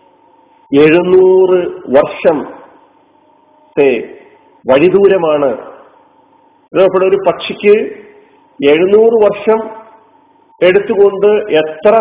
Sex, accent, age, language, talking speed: male, native, 40-59, Malayalam, 55 wpm